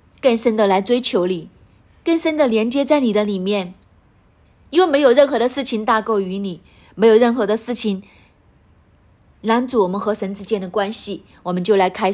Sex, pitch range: female, 190-255 Hz